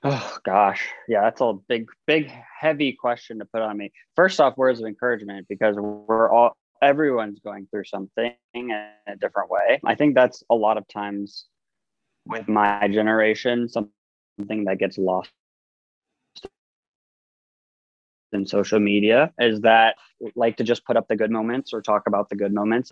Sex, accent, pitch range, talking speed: male, American, 105-120 Hz, 160 wpm